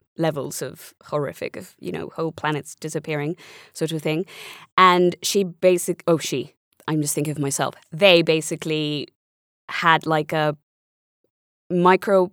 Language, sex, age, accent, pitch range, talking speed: English, female, 20-39, British, 160-195 Hz, 135 wpm